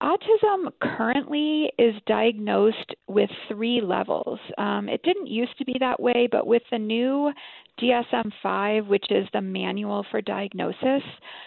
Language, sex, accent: English, female, American